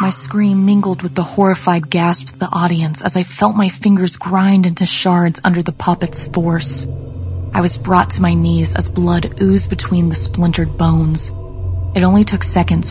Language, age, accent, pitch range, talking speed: English, 20-39, American, 130-180 Hz, 180 wpm